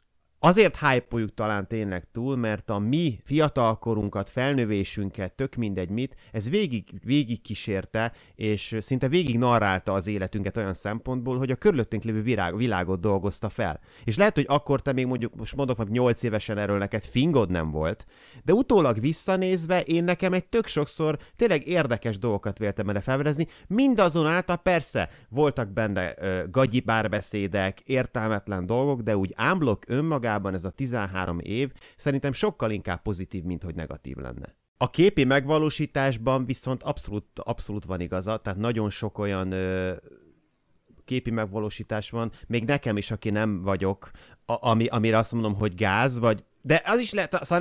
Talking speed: 155 wpm